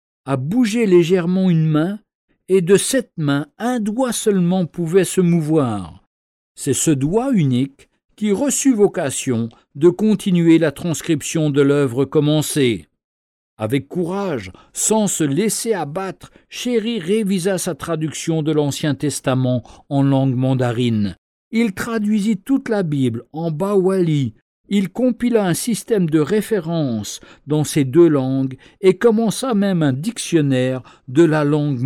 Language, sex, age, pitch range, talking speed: French, male, 50-69, 140-200 Hz, 135 wpm